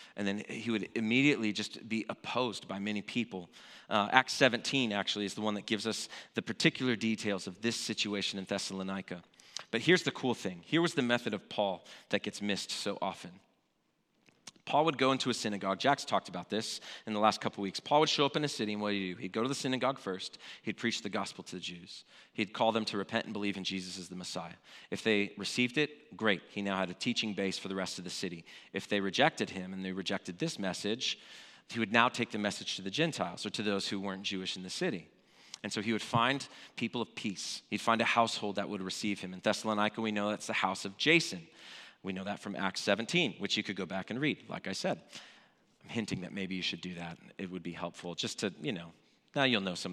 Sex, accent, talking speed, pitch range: male, American, 245 wpm, 95-120 Hz